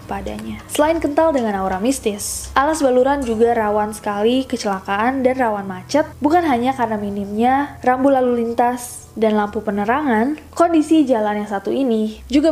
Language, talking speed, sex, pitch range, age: Indonesian, 150 wpm, female, 215-270 Hz, 20-39